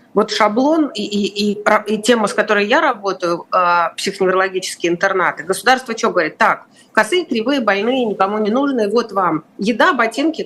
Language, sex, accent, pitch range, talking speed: Russian, female, native, 205-250 Hz, 160 wpm